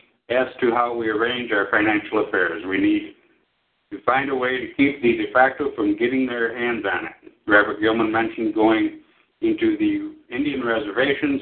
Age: 60-79